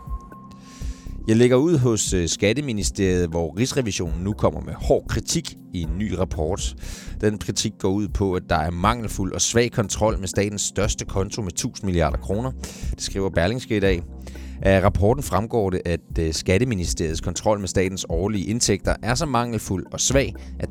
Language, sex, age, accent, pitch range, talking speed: Danish, male, 30-49, native, 85-110 Hz, 170 wpm